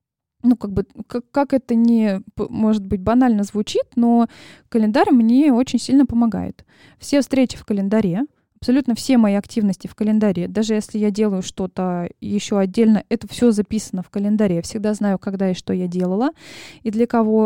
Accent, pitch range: native, 205-250 Hz